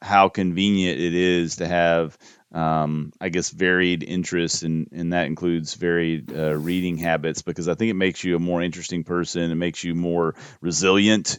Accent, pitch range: American, 85-95 Hz